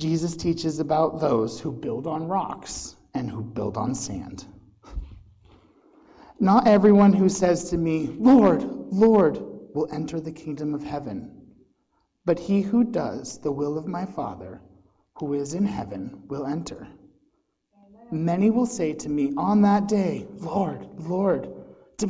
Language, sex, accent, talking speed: English, male, American, 145 wpm